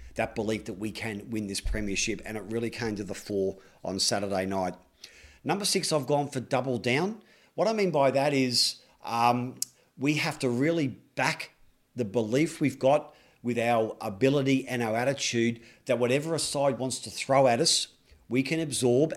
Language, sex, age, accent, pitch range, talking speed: English, male, 40-59, Australian, 110-130 Hz, 185 wpm